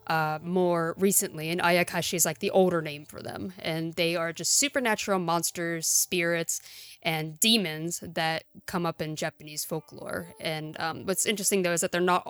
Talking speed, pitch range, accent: 175 wpm, 170-205 Hz, American